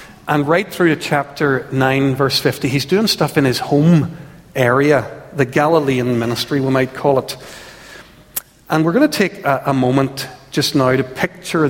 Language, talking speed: English, 175 wpm